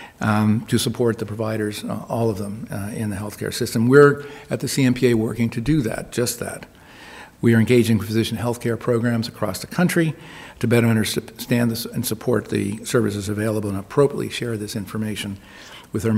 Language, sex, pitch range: English, male, 110-130 Hz